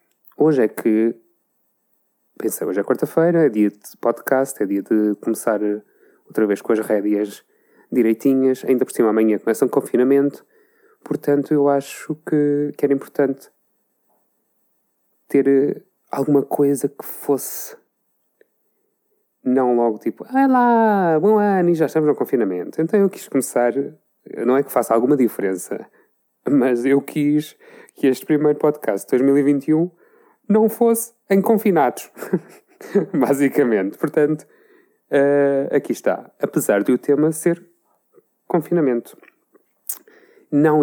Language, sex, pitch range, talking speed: Portuguese, male, 120-165 Hz, 130 wpm